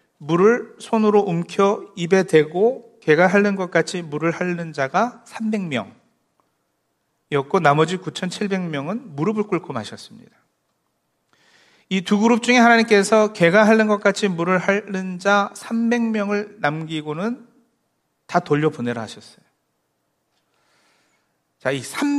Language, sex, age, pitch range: Korean, male, 40-59, 160-220 Hz